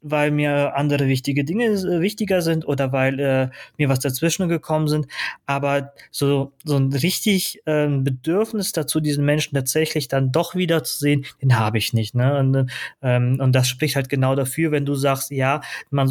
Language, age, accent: German, 20-39, German